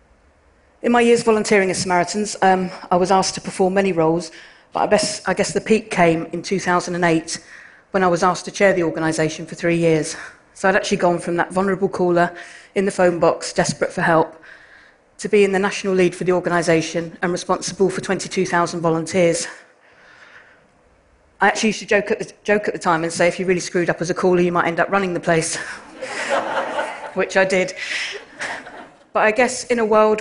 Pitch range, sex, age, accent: 170-195 Hz, female, 40-59, British